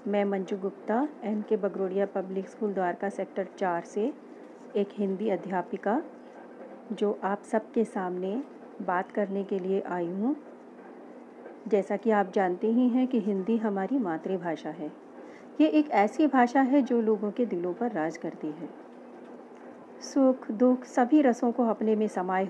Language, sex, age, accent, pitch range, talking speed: Hindi, female, 40-59, native, 200-260 Hz, 150 wpm